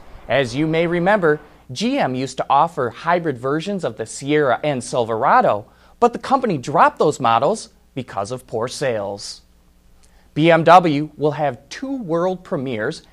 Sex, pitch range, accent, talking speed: male, 120-175 Hz, American, 140 wpm